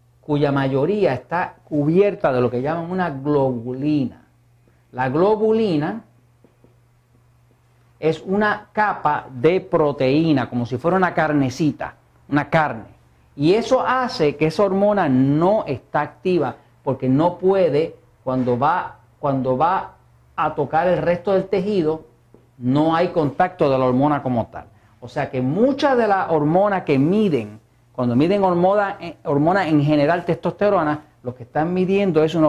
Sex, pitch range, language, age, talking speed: male, 125-180 Hz, Spanish, 50-69, 140 wpm